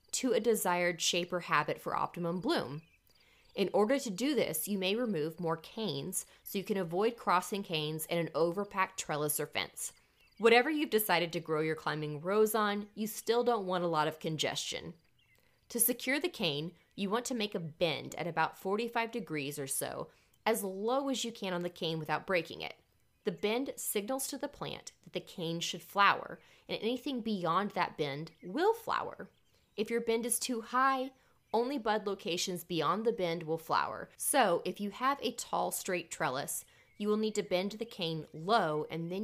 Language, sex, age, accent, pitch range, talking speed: English, female, 20-39, American, 165-230 Hz, 190 wpm